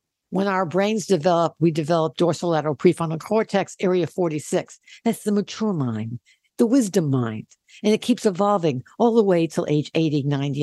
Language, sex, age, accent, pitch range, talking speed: English, female, 60-79, American, 160-210 Hz, 165 wpm